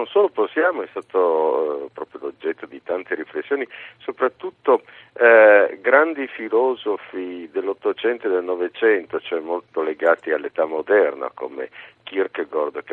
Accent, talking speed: native, 120 wpm